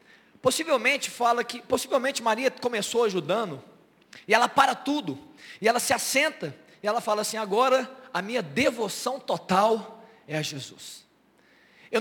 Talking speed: 140 wpm